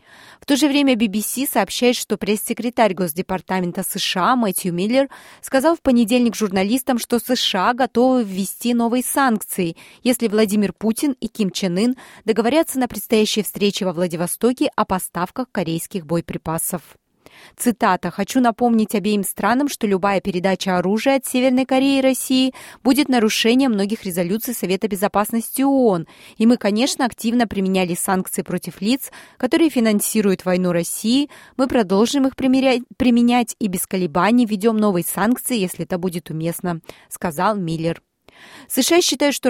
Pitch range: 185-250 Hz